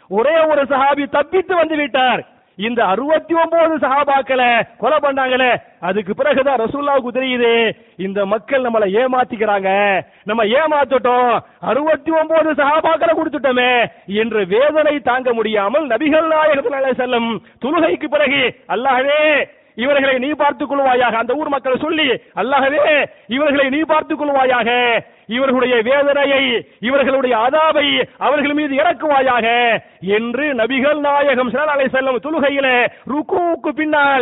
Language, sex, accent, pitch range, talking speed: English, male, Indian, 230-295 Hz, 85 wpm